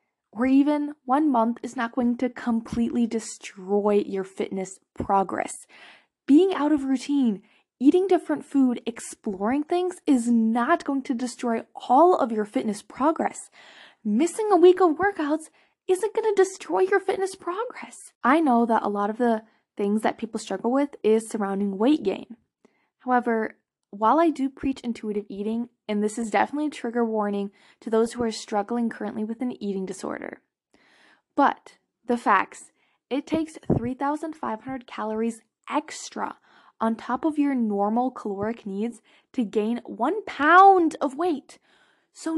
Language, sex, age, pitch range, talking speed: English, female, 10-29, 225-320 Hz, 150 wpm